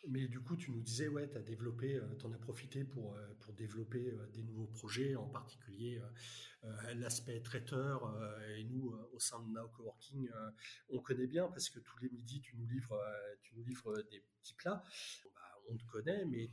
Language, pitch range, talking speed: French, 115-145 Hz, 190 wpm